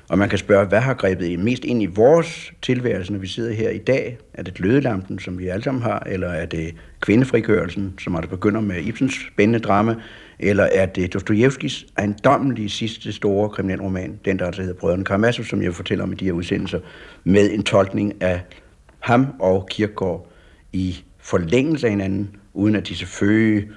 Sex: male